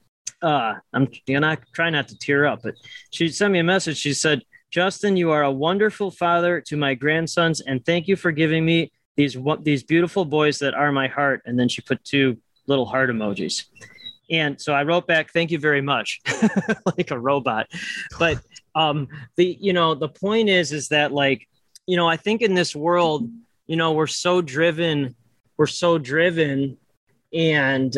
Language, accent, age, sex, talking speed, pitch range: English, American, 20-39, male, 190 wpm, 140-175 Hz